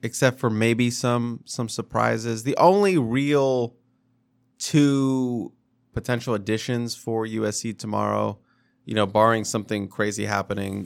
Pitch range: 110-125 Hz